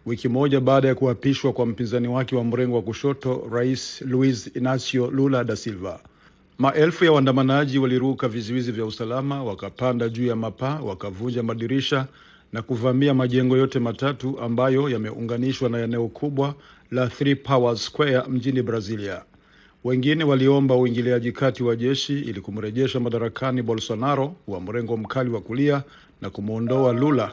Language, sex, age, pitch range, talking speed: Swahili, male, 50-69, 115-135 Hz, 145 wpm